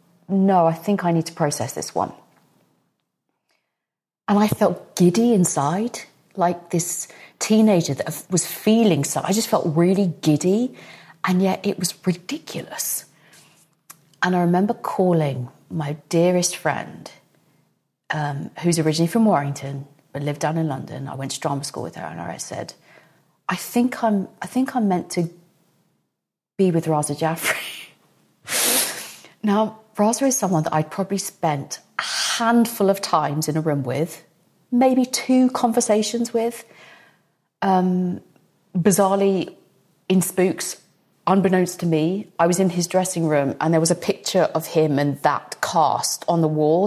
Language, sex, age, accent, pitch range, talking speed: English, female, 30-49, British, 160-215 Hz, 150 wpm